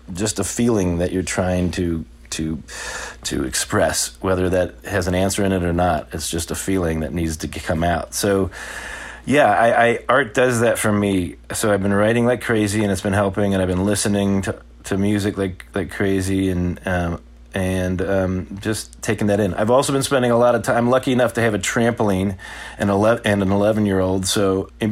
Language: English